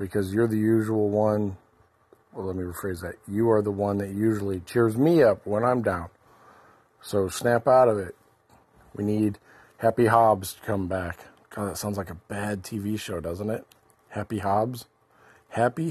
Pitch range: 105-130 Hz